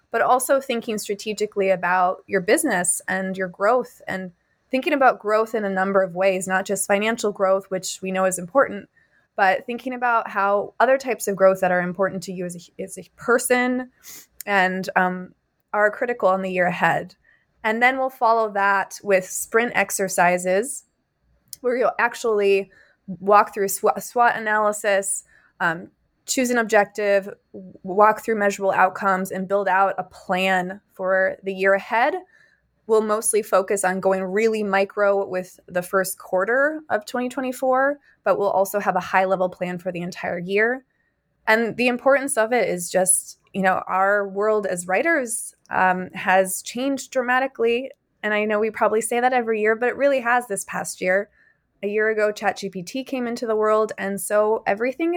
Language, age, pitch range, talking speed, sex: English, 20-39, 190-235 Hz, 165 wpm, female